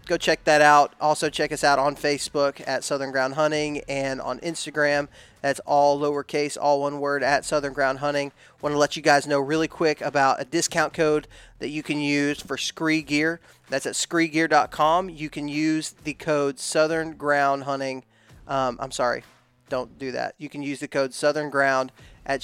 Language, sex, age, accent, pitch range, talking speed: English, male, 30-49, American, 135-150 Hz, 190 wpm